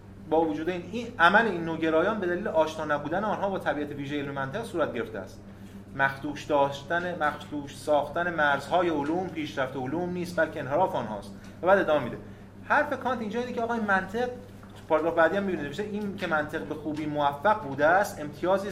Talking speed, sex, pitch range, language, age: 180 wpm, male, 135-200 Hz, Persian, 30-49